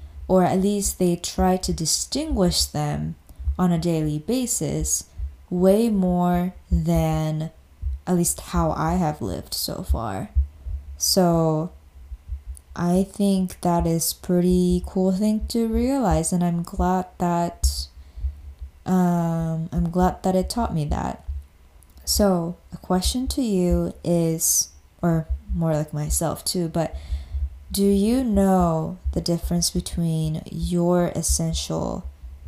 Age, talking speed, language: 20-39, 120 wpm, English